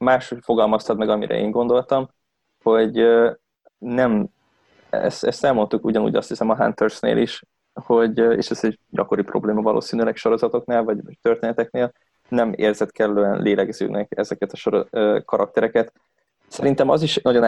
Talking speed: 135 wpm